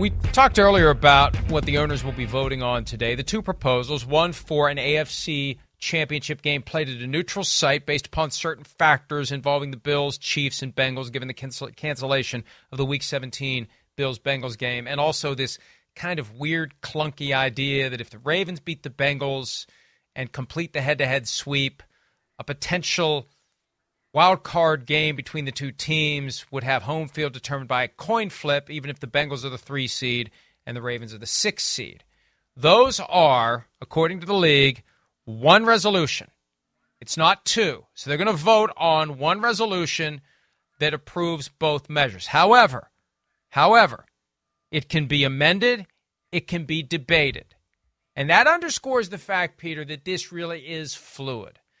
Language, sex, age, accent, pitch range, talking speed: English, male, 40-59, American, 135-160 Hz, 165 wpm